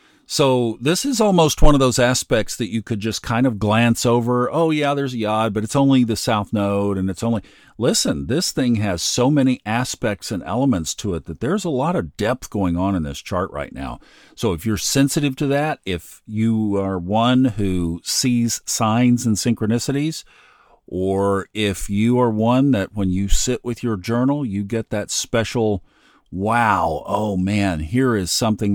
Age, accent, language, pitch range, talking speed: 50-69, American, English, 95-120 Hz, 190 wpm